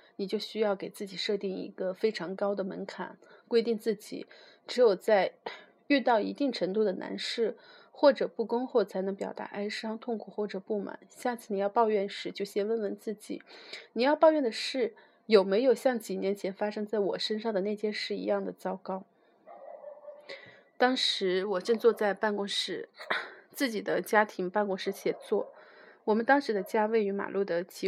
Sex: female